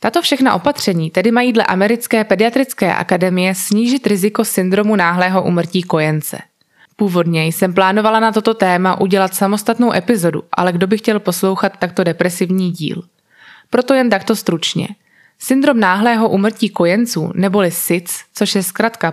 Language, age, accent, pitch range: Czech, 20-39, native, 180-220 Hz